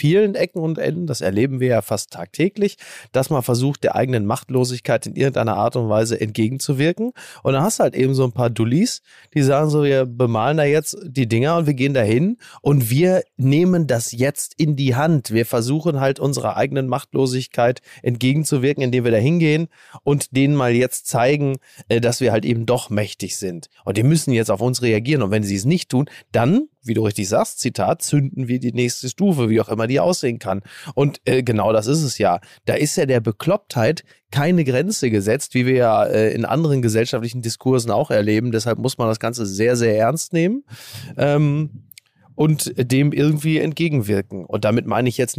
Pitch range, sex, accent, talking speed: 115-145 Hz, male, German, 200 wpm